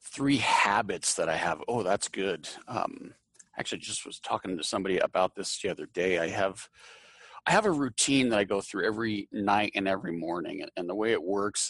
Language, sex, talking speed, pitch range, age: English, male, 205 wpm, 95-115 Hz, 40-59